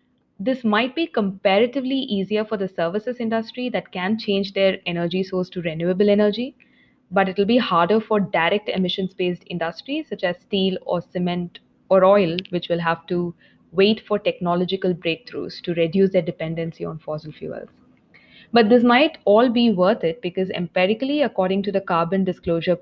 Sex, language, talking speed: female, English, 165 wpm